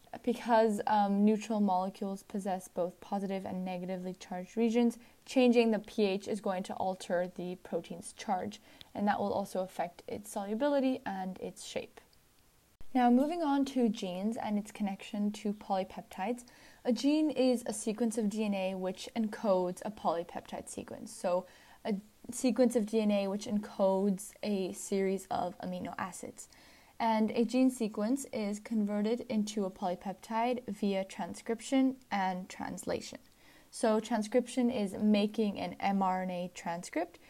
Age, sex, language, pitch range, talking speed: 10-29, female, English, 190-235 Hz, 135 wpm